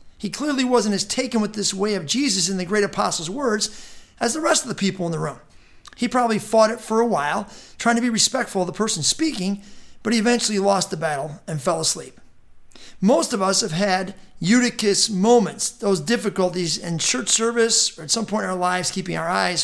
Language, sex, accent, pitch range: English, male, American, 180-230 Hz